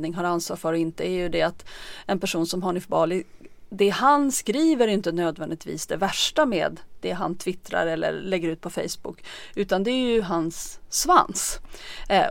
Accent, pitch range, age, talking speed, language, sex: Swedish, 175-220 Hz, 30-49, 180 wpm, English, female